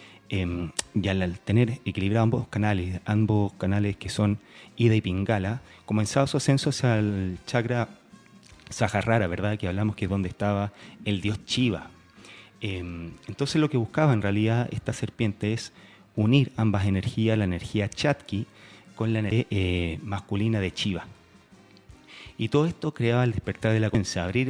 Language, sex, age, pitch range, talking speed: Spanish, male, 30-49, 95-115 Hz, 155 wpm